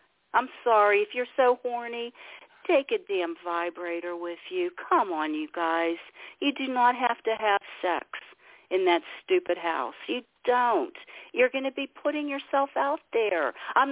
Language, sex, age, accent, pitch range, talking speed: English, female, 50-69, American, 190-305 Hz, 165 wpm